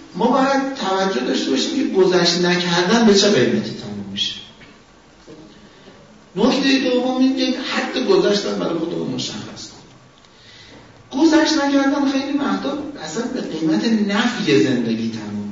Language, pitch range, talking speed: Persian, 150-240 Hz, 125 wpm